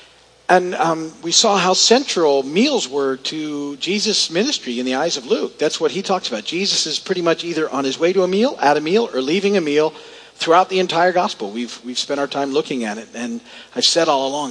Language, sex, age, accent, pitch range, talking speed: English, male, 50-69, American, 150-215 Hz, 230 wpm